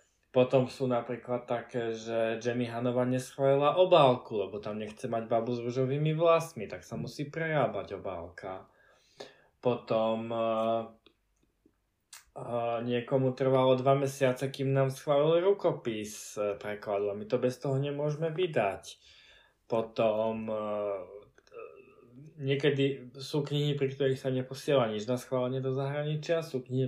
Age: 20-39